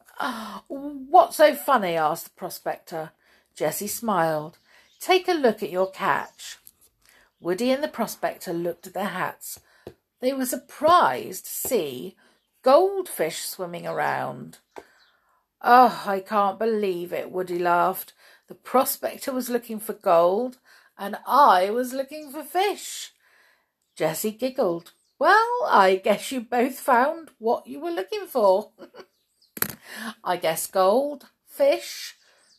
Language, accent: English, British